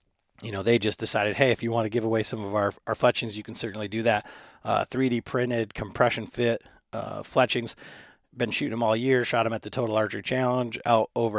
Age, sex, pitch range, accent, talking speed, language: 30-49, male, 105-120 Hz, American, 225 wpm, English